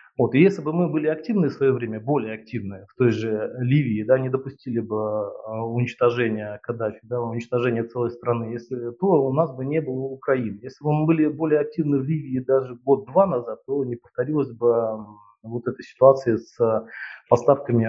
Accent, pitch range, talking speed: native, 115-145 Hz, 180 wpm